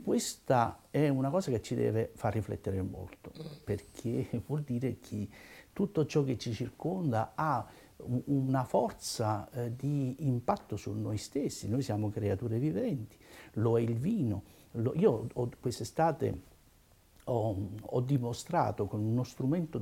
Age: 60-79